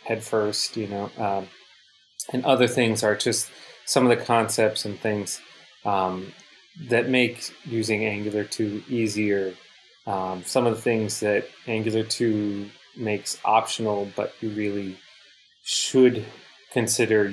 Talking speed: 130 wpm